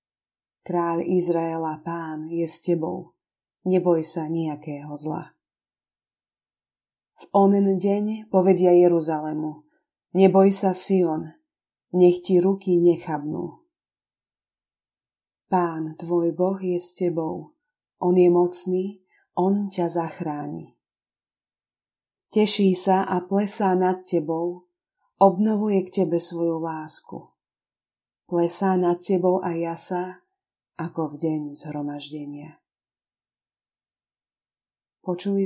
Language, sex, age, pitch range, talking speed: Slovak, female, 30-49, 160-190 Hz, 95 wpm